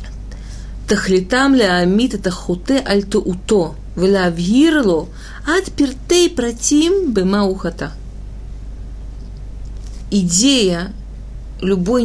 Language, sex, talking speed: Russian, female, 60 wpm